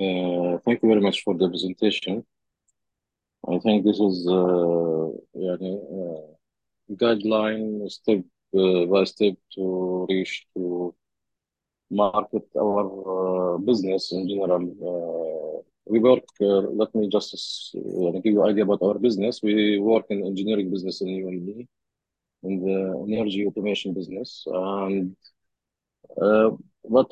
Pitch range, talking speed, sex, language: 90-110 Hz, 130 wpm, male, Arabic